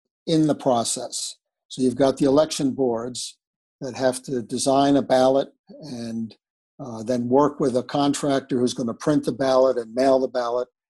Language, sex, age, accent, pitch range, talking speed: English, male, 60-79, American, 125-145 Hz, 175 wpm